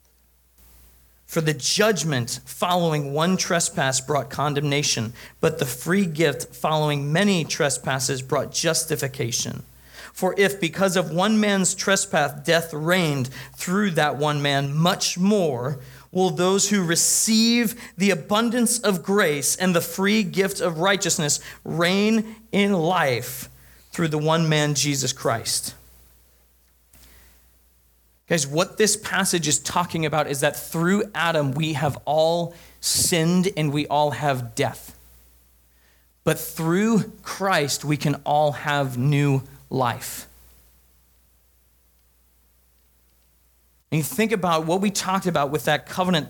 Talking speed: 125 wpm